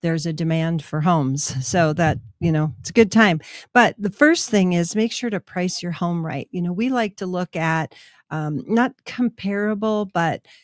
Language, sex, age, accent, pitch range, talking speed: English, female, 50-69, American, 160-190 Hz, 205 wpm